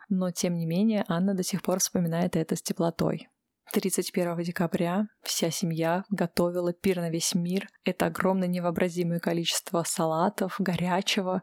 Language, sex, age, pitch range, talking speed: Russian, female, 20-39, 170-200 Hz, 140 wpm